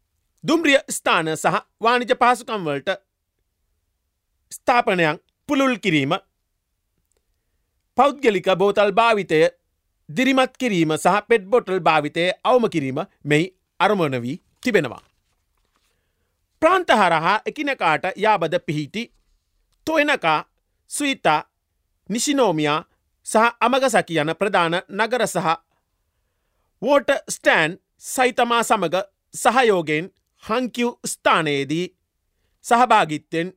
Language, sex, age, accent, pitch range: Japanese, male, 40-59, Indian, 150-245 Hz